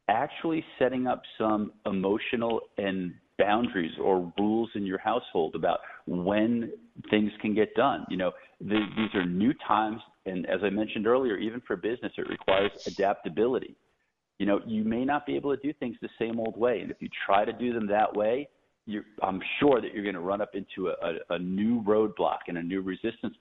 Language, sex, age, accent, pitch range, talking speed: English, male, 40-59, American, 100-120 Hz, 200 wpm